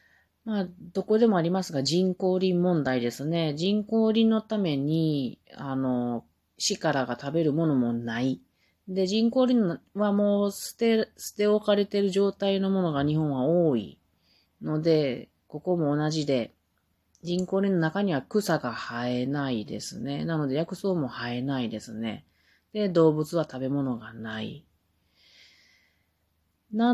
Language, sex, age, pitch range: Japanese, female, 30-49, 130-195 Hz